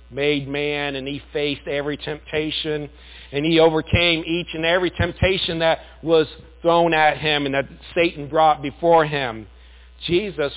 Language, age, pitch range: English, 50-69, 105-170 Hz